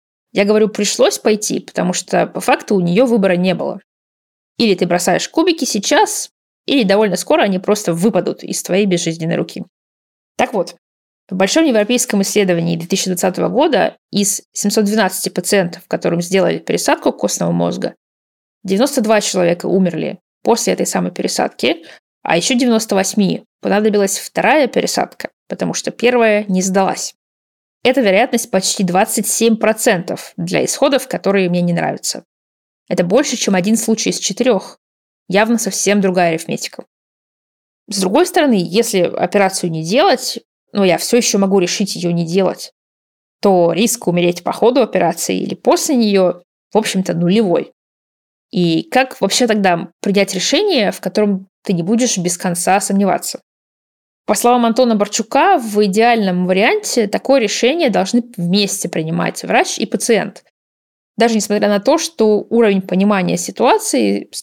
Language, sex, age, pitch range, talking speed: Russian, female, 20-39, 180-225 Hz, 140 wpm